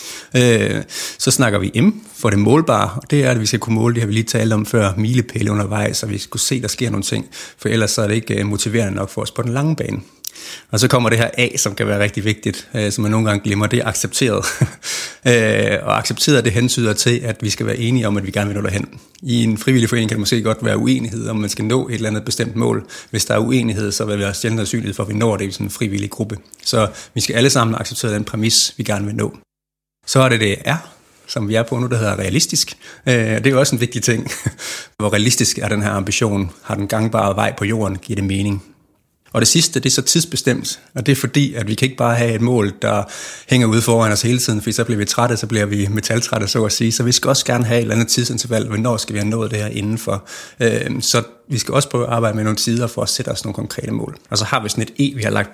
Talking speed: 275 wpm